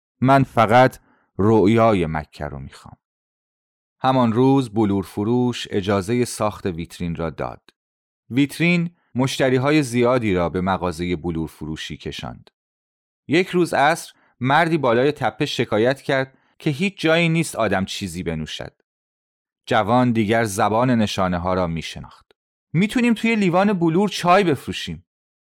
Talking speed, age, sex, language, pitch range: 125 wpm, 30-49, male, Persian, 90-135 Hz